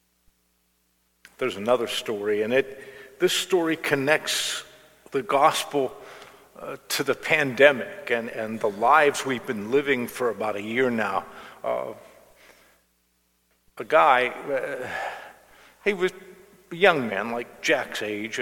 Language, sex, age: English, male, 50-69